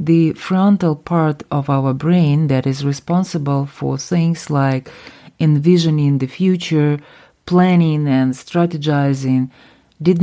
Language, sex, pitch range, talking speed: English, female, 140-180 Hz, 110 wpm